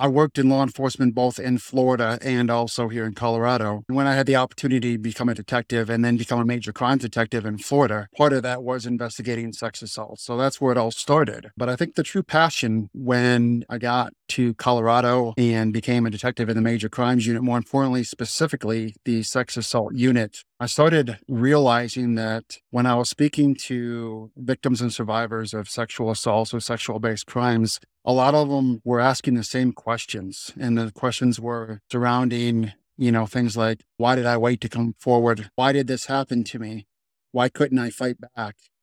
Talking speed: 195 wpm